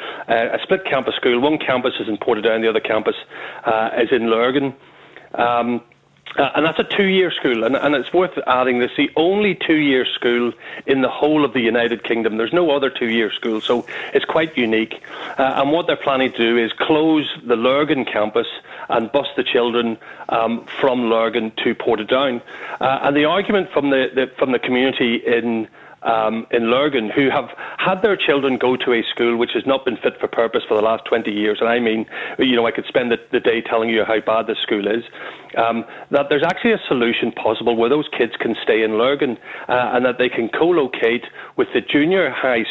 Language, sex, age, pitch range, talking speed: English, male, 40-59, 115-140 Hz, 210 wpm